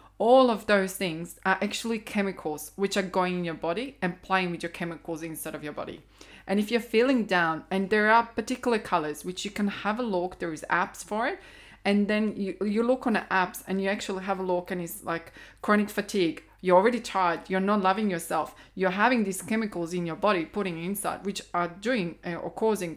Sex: female